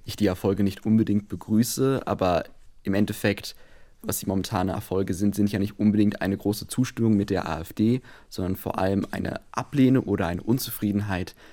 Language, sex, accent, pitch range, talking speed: German, male, German, 95-110 Hz, 165 wpm